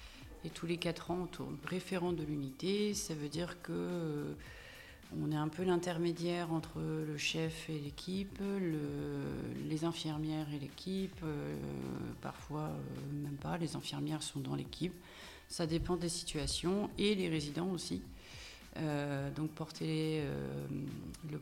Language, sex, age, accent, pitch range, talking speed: French, female, 40-59, French, 150-180 Hz, 150 wpm